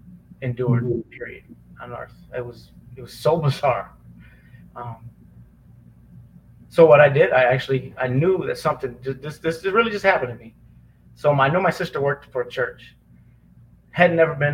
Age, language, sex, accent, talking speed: 30-49, English, male, American, 170 wpm